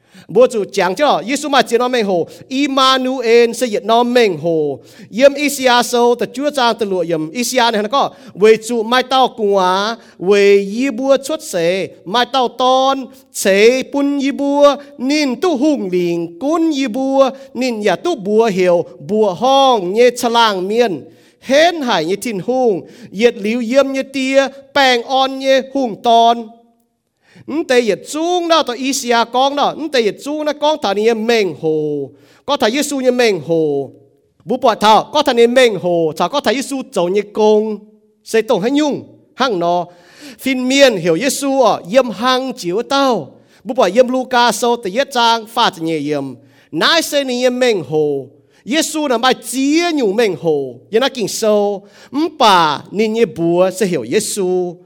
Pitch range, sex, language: 195-270 Hz, male, English